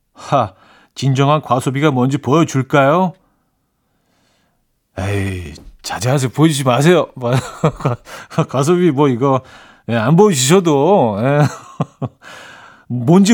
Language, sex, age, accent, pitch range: Korean, male, 40-59, native, 115-160 Hz